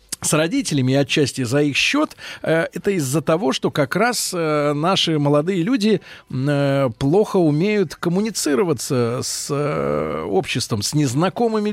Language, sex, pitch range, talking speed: Russian, male, 140-200 Hz, 115 wpm